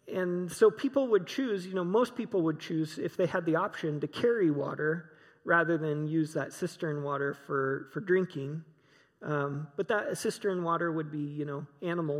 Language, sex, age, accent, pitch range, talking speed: English, male, 40-59, American, 150-200 Hz, 185 wpm